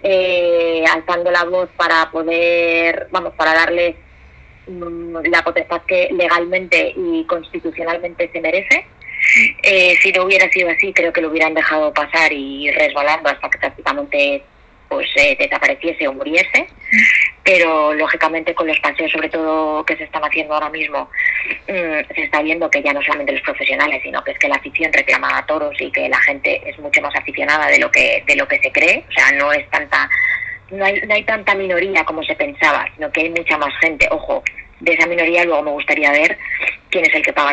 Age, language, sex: 20-39, Spanish, female